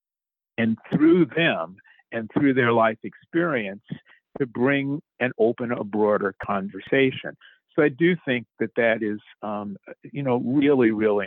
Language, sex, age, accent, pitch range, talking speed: English, male, 50-69, American, 110-145 Hz, 145 wpm